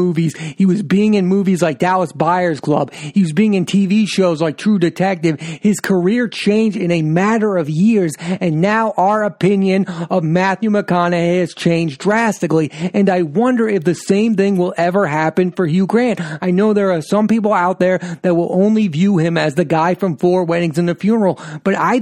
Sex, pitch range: male, 170-205 Hz